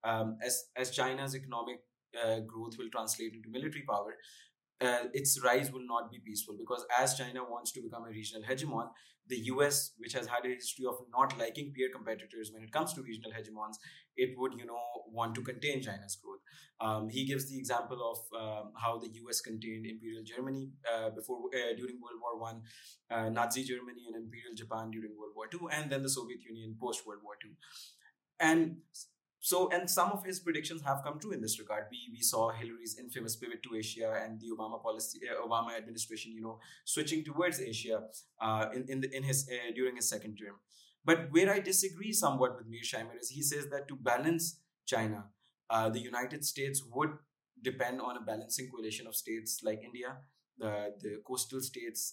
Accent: Indian